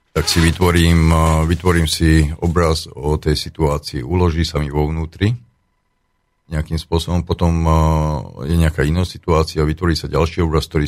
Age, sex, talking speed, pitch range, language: 50-69, male, 150 wpm, 75-85 Hz, Slovak